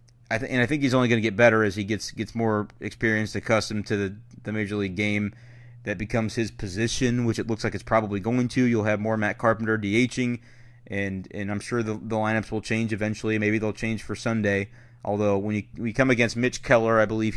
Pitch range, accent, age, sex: 105-120 Hz, American, 30-49, male